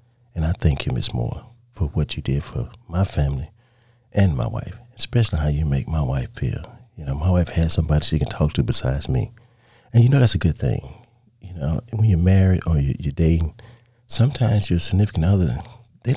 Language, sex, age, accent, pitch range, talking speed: English, male, 40-59, American, 85-120 Hz, 210 wpm